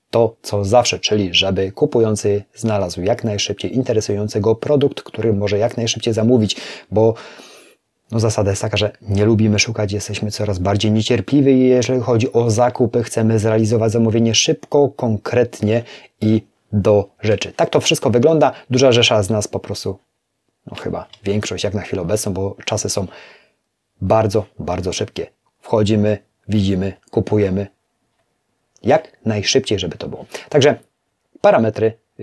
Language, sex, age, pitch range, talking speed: Polish, male, 30-49, 105-125 Hz, 140 wpm